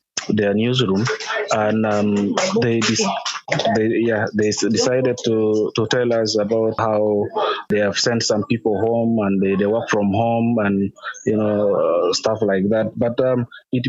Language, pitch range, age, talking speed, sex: English, 105-120 Hz, 20-39, 170 wpm, male